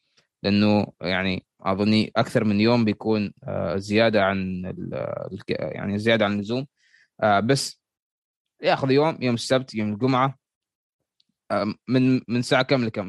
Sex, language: male, Arabic